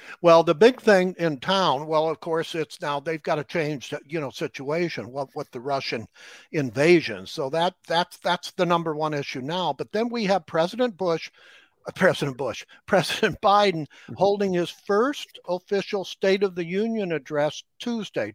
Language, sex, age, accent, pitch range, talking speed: English, male, 60-79, American, 145-190 Hz, 175 wpm